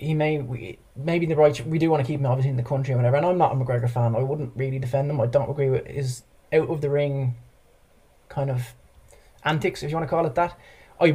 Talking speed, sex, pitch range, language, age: 270 wpm, male, 135-155 Hz, English, 20-39